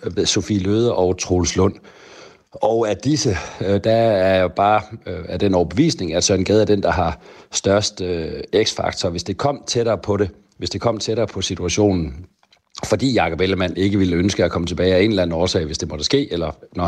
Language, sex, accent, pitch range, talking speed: Danish, male, native, 90-110 Hz, 200 wpm